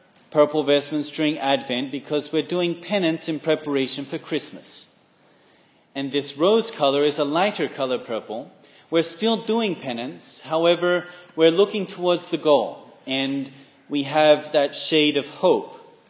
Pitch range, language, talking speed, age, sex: 120-150 Hz, English, 140 wpm, 30-49, male